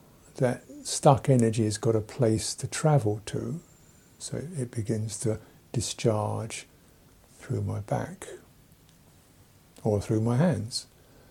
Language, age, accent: English, 60-79, British